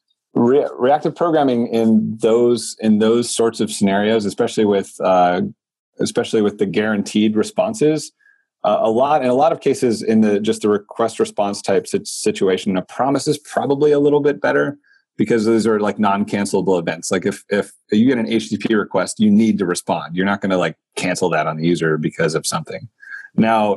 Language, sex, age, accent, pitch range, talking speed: English, male, 30-49, American, 95-115 Hz, 185 wpm